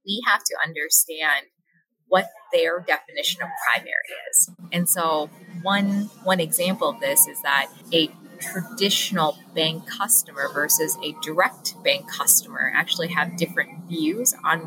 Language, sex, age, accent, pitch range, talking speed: English, female, 20-39, American, 165-195 Hz, 135 wpm